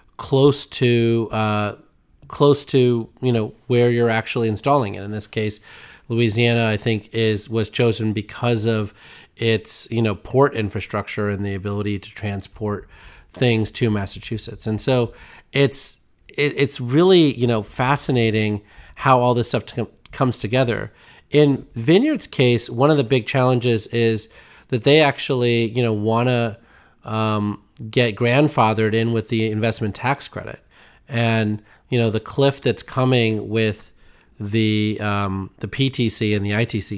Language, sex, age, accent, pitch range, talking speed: English, male, 30-49, American, 105-125 Hz, 145 wpm